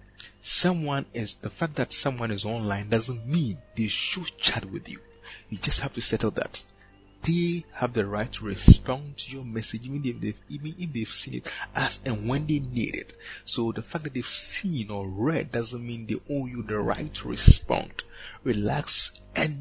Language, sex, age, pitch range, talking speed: English, male, 30-49, 105-135 Hz, 195 wpm